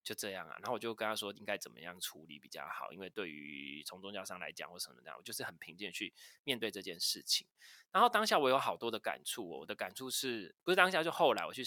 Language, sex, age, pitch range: Chinese, male, 20-39, 100-125 Hz